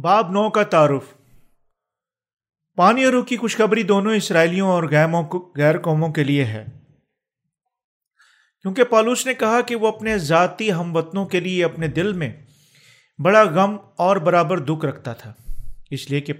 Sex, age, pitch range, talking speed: male, 40-59, 140-190 Hz, 155 wpm